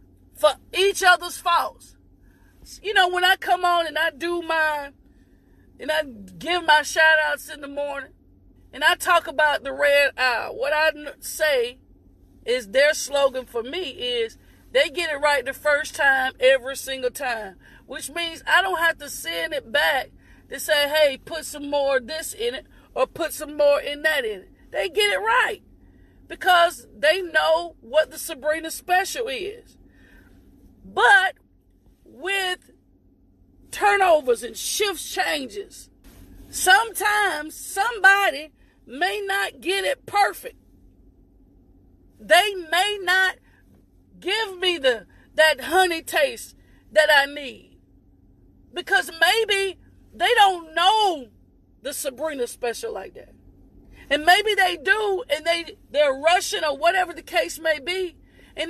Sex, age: female, 40-59